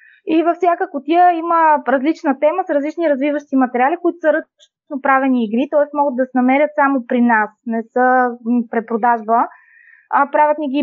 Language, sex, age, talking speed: Bulgarian, female, 20-39, 170 wpm